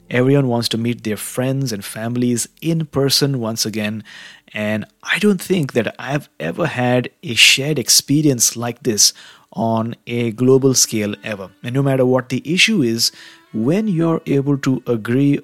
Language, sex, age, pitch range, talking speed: English, male, 30-49, 105-130 Hz, 165 wpm